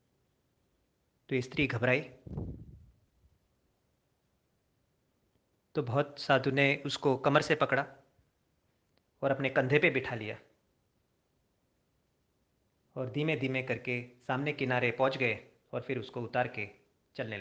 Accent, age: native, 30-49